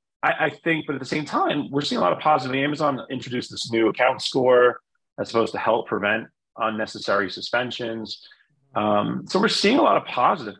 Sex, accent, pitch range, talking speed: male, American, 100-120 Hz, 195 wpm